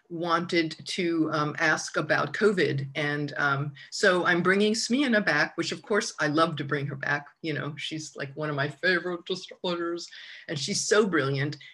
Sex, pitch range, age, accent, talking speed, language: female, 145-165 Hz, 50-69, American, 180 wpm, English